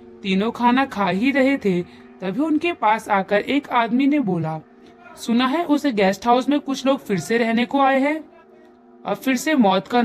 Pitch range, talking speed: 180-260 Hz, 195 wpm